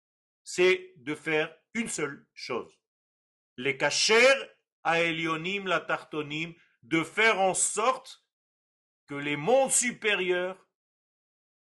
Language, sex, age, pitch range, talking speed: French, male, 50-69, 145-215 Hz, 100 wpm